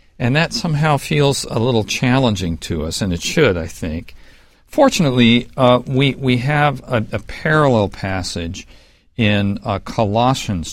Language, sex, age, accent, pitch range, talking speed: English, male, 50-69, American, 95-120 Hz, 145 wpm